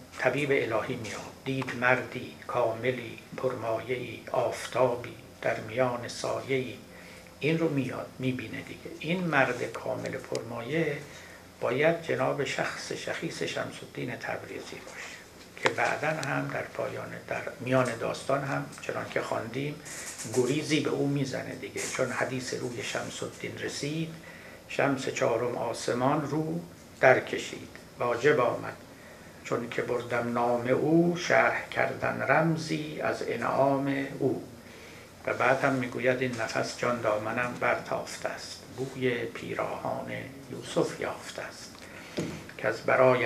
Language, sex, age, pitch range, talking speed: Persian, male, 60-79, 120-140 Hz, 125 wpm